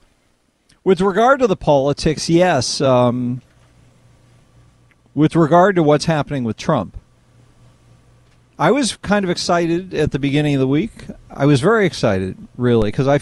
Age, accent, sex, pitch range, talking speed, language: 40-59, American, male, 125-170 Hz, 145 wpm, English